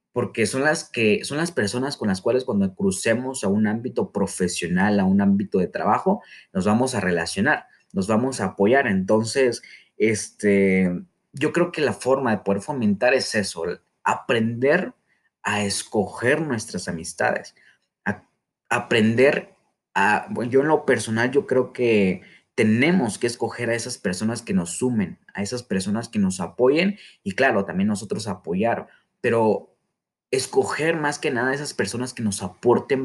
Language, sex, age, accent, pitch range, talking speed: Spanish, male, 30-49, Mexican, 105-145 Hz, 160 wpm